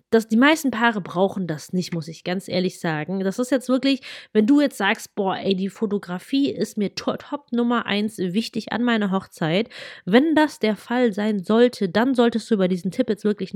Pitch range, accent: 190-235 Hz, German